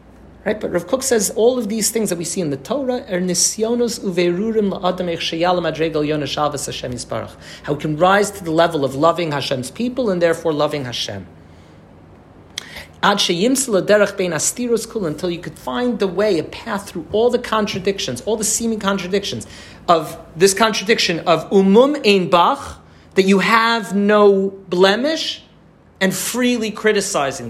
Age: 40-59